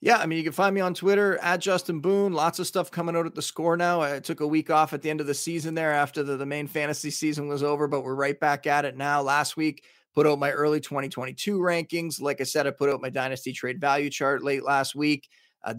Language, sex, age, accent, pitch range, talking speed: English, male, 30-49, American, 135-170 Hz, 270 wpm